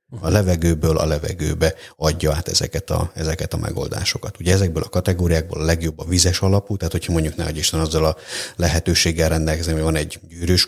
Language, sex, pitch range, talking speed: Hungarian, male, 80-90 Hz, 185 wpm